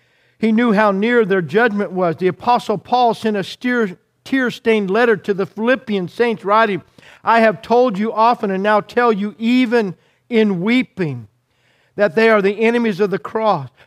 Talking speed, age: 170 wpm, 50-69